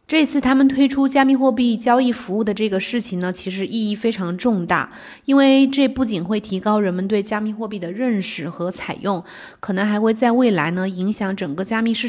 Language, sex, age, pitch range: Chinese, female, 20-39, 185-230 Hz